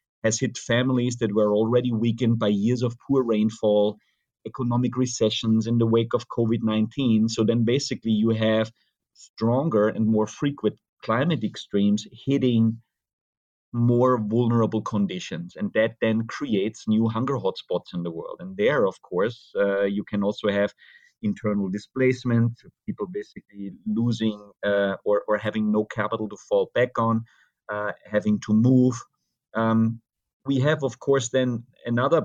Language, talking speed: English, 145 wpm